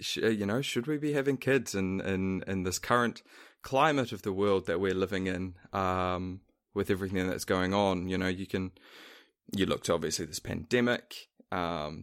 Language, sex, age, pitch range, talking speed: English, male, 20-39, 90-105 Hz, 185 wpm